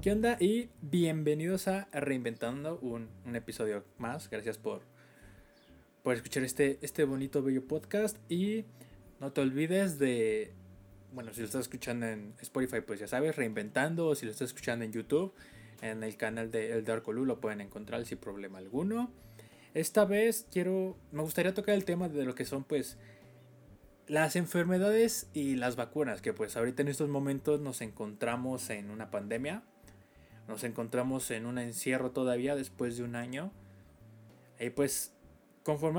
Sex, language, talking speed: male, Spanish, 160 wpm